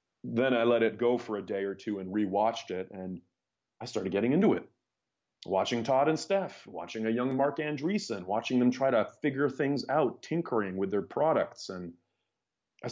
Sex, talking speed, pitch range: male, 195 wpm, 105-140 Hz